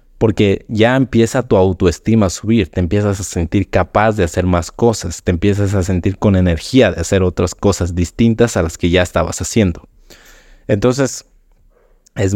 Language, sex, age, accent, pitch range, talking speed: Spanish, male, 20-39, Mexican, 90-105 Hz, 170 wpm